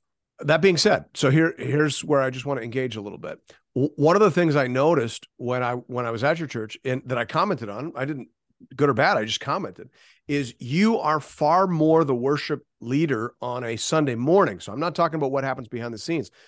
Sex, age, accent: male, 40-59, American